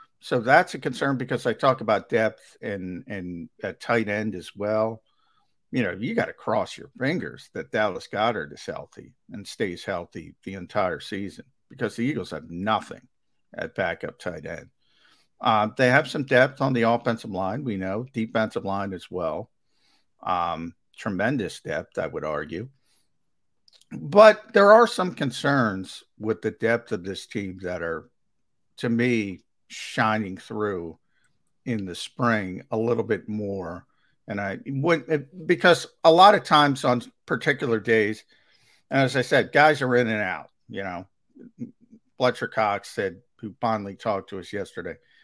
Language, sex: English, male